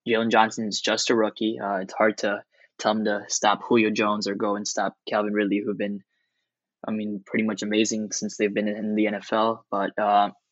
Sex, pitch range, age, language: male, 105-115 Hz, 10-29, English